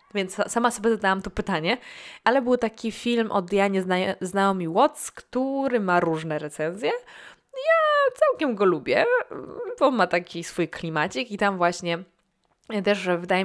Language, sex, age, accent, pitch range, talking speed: Polish, female, 20-39, native, 175-230 Hz, 155 wpm